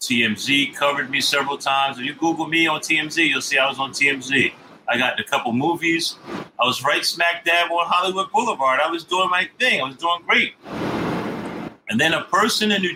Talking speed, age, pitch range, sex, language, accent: 215 wpm, 40-59, 115-165 Hz, male, English, American